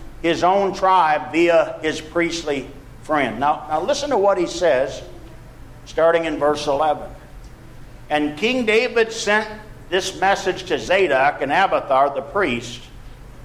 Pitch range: 140-195 Hz